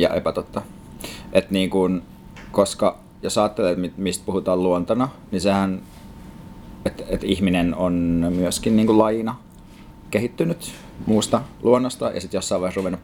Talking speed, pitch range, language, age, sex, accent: 130 wpm, 95-105 Hz, Finnish, 30-49, male, native